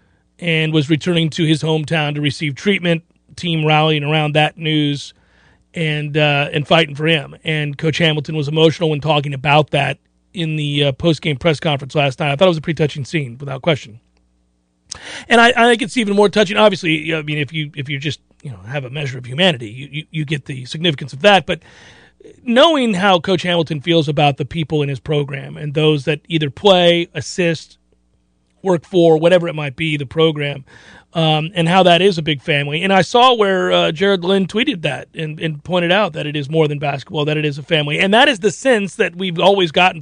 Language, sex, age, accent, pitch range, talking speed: English, male, 40-59, American, 150-180 Hz, 220 wpm